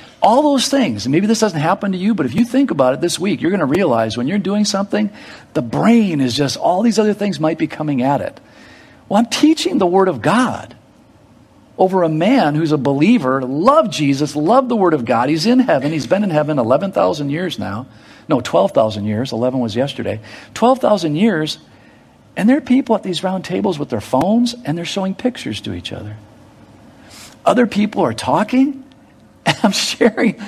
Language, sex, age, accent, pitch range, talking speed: English, male, 50-69, American, 150-240 Hz, 200 wpm